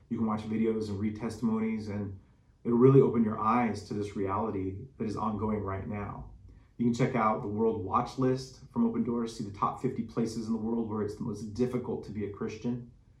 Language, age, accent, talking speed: English, 30-49, American, 225 wpm